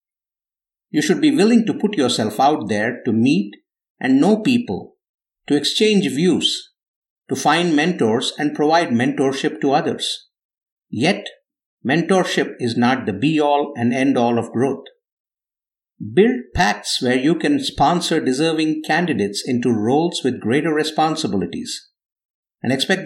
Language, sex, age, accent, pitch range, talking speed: English, male, 50-69, Indian, 130-190 Hz, 130 wpm